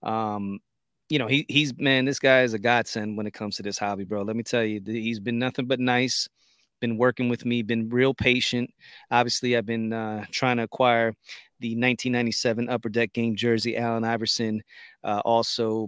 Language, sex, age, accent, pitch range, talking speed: English, male, 30-49, American, 110-130 Hz, 195 wpm